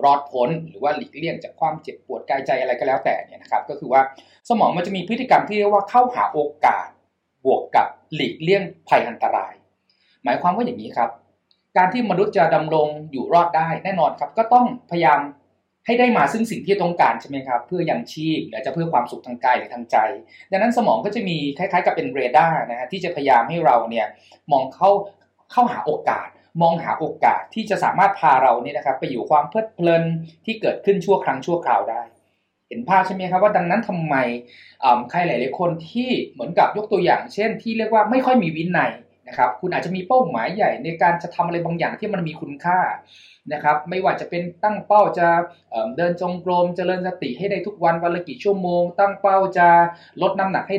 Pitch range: 155-205 Hz